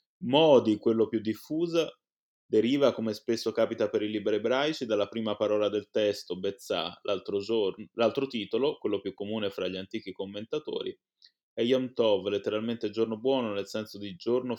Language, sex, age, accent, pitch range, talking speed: Italian, male, 20-39, native, 100-125 Hz, 160 wpm